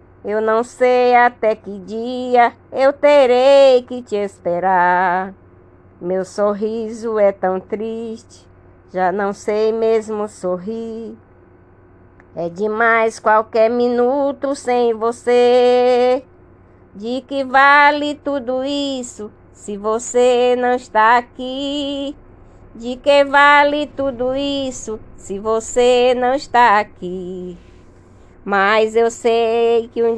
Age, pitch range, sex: 20-39, 210-250 Hz, female